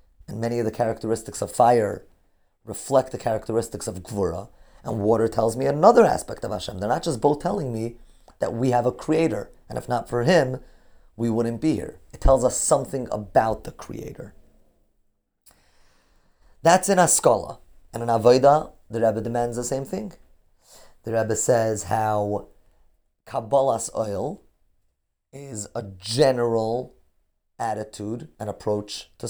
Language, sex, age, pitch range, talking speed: English, male, 30-49, 110-135 Hz, 145 wpm